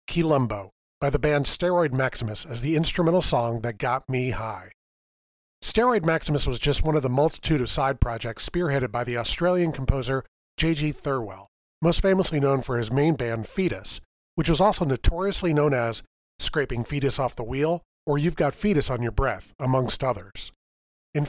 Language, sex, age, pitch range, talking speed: English, male, 40-59, 120-165 Hz, 170 wpm